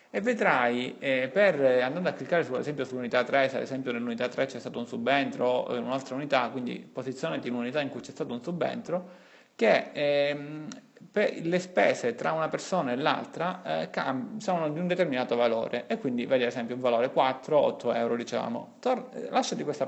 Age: 30-49